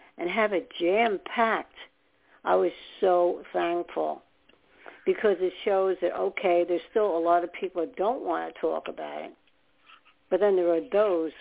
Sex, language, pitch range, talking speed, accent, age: female, English, 170-240 Hz, 165 wpm, American, 60-79